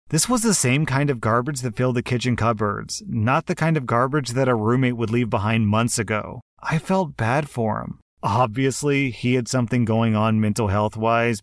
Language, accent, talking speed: English, American, 200 wpm